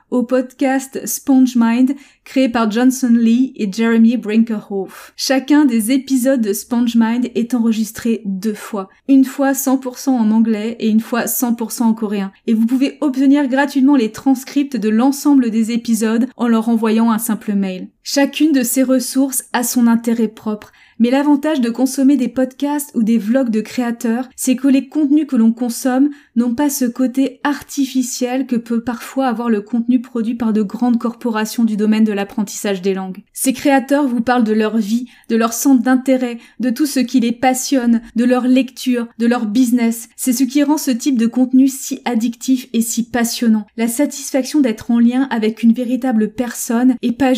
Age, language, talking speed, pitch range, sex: 20-39, French, 180 wpm, 225-265 Hz, female